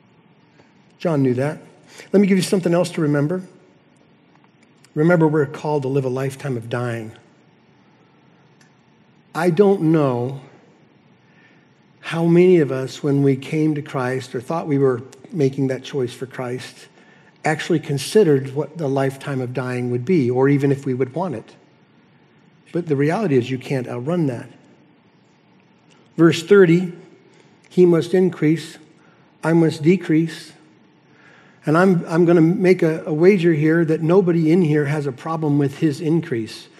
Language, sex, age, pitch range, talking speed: English, male, 60-79, 135-170 Hz, 150 wpm